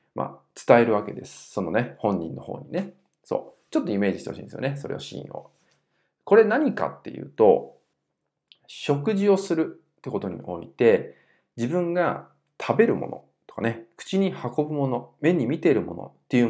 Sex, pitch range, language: male, 110-185 Hz, Japanese